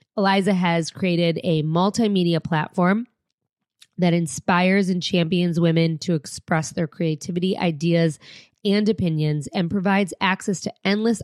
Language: English